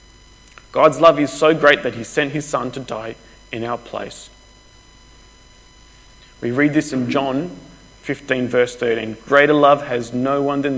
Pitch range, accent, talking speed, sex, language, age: 120-145 Hz, Australian, 160 wpm, male, English, 20-39